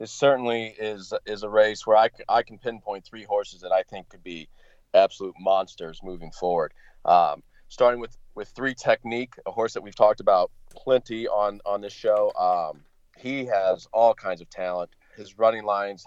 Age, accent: 30-49, American